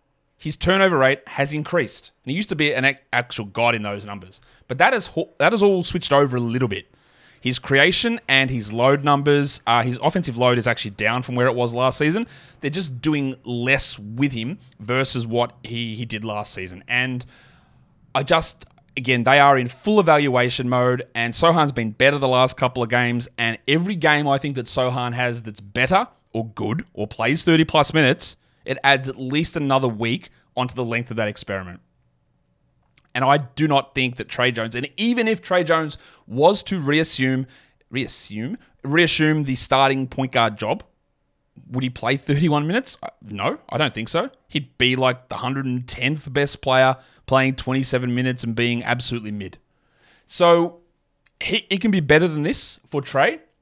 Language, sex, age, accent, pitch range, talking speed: English, male, 30-49, Australian, 120-145 Hz, 185 wpm